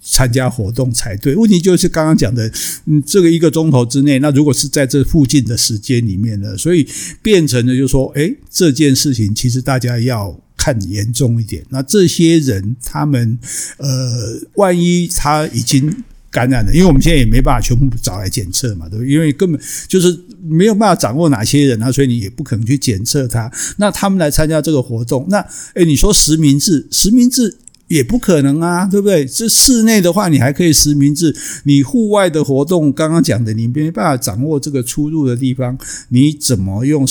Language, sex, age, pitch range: Chinese, male, 60-79, 125-165 Hz